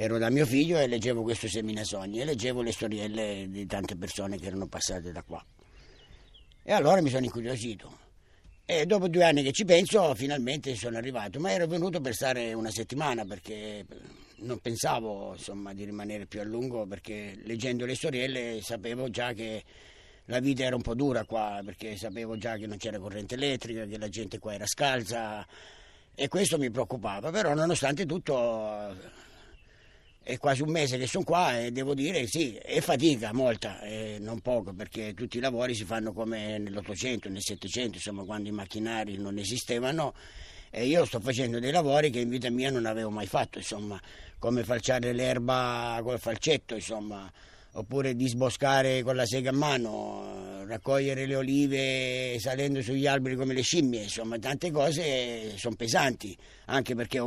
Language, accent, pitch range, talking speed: Italian, native, 105-130 Hz, 170 wpm